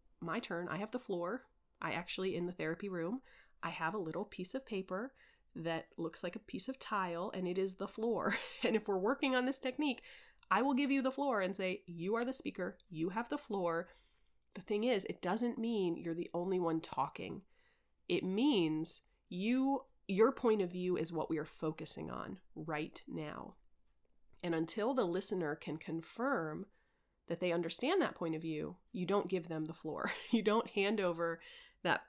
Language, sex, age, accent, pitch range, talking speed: English, female, 30-49, American, 165-235 Hz, 195 wpm